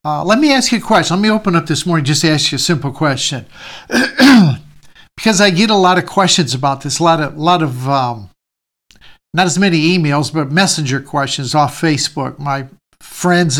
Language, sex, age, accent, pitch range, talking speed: English, male, 60-79, American, 155-210 Hz, 200 wpm